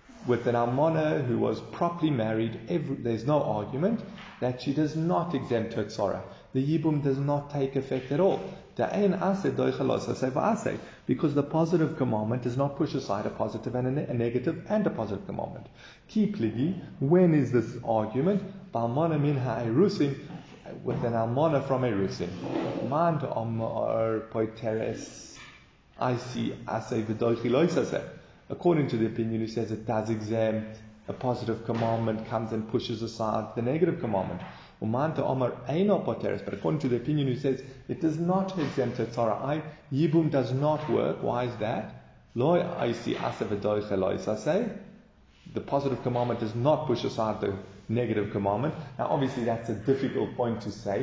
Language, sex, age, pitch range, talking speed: English, male, 30-49, 110-155 Hz, 130 wpm